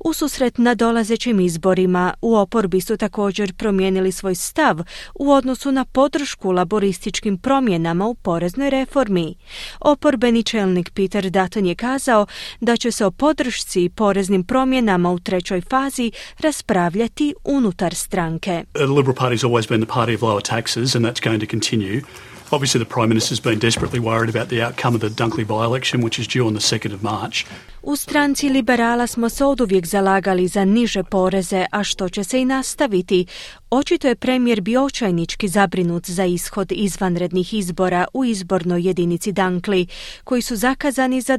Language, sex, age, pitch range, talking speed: Croatian, female, 30-49, 175-245 Hz, 135 wpm